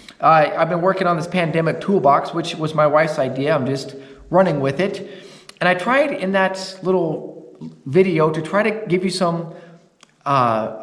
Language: English